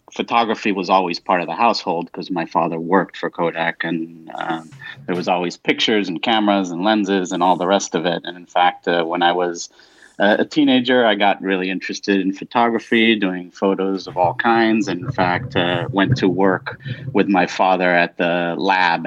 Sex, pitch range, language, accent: male, 90-105 Hz, English, American